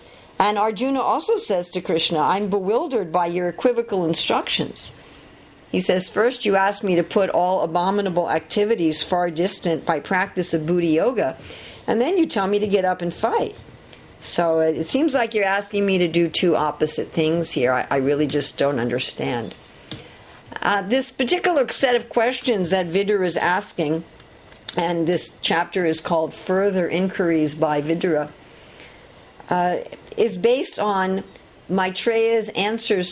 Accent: American